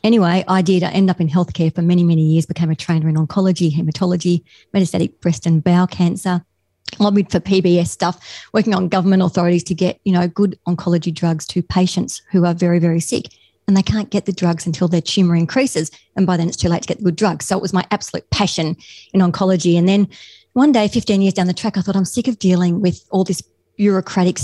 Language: English